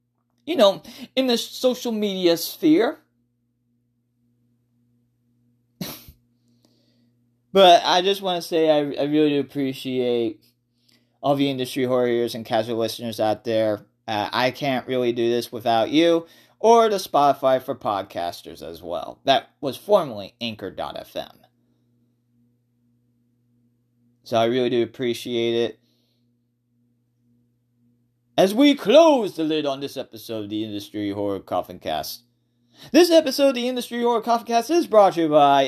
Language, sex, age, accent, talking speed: English, male, 30-49, American, 135 wpm